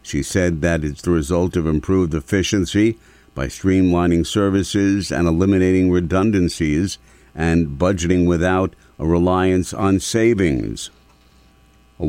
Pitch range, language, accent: 80-95 Hz, English, American